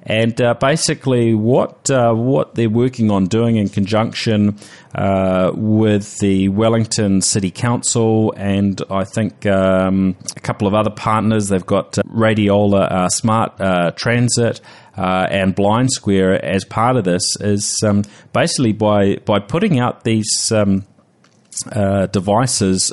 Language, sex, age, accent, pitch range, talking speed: English, male, 30-49, Australian, 95-115 Hz, 140 wpm